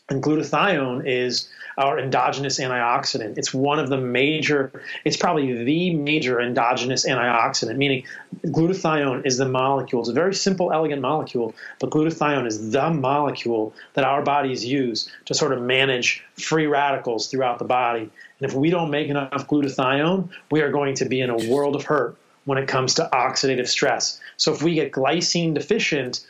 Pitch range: 130-155 Hz